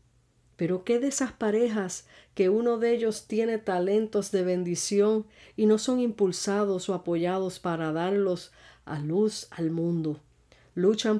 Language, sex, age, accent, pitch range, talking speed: Spanish, female, 50-69, American, 170-205 Hz, 140 wpm